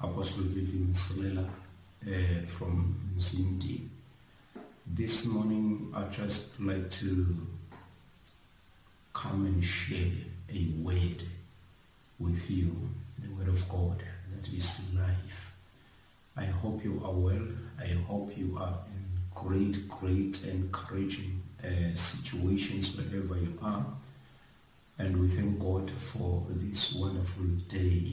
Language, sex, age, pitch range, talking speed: English, male, 50-69, 90-100 Hz, 110 wpm